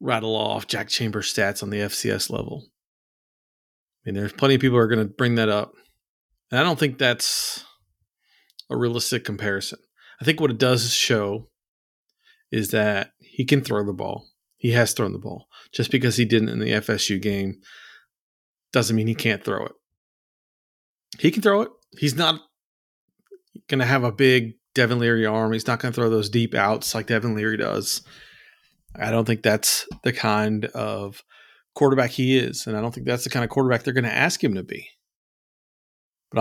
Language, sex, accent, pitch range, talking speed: English, male, American, 105-130 Hz, 190 wpm